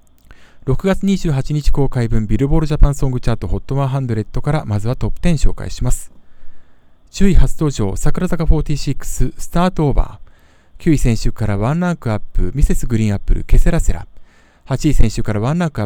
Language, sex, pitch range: Japanese, male, 95-145 Hz